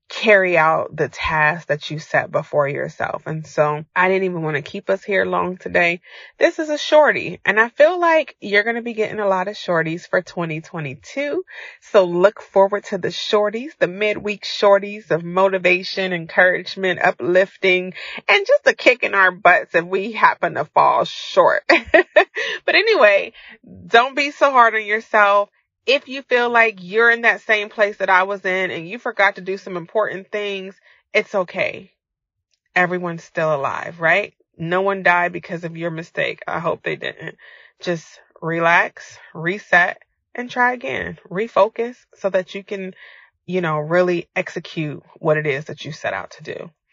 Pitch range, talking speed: 175-230 Hz, 175 wpm